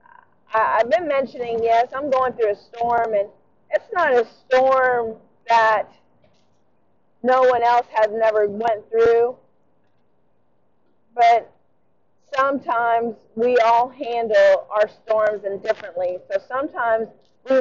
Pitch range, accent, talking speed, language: 215-255 Hz, American, 110 wpm, English